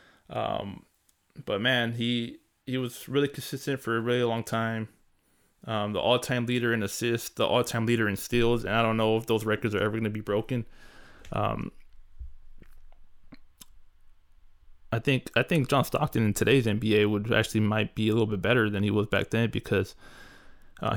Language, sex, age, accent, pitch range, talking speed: English, male, 20-39, American, 105-120 Hz, 185 wpm